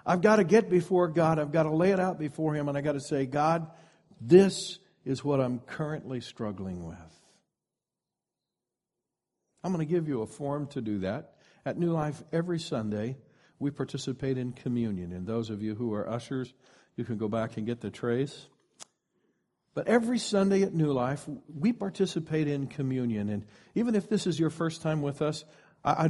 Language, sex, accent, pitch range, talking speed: English, male, American, 125-155 Hz, 190 wpm